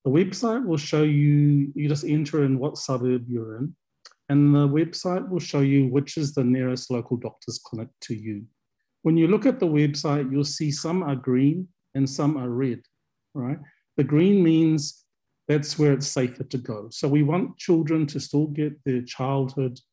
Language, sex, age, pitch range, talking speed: English, male, 40-59, 125-155 Hz, 185 wpm